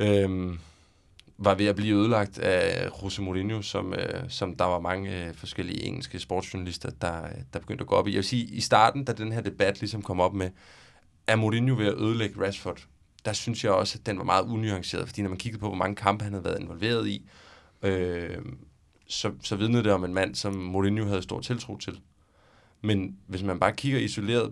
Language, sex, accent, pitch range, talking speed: Danish, male, native, 95-110 Hz, 215 wpm